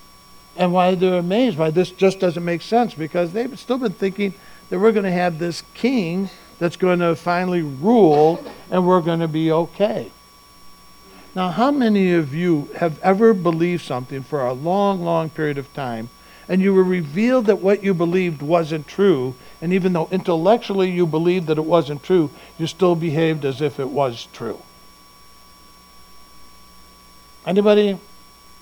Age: 60-79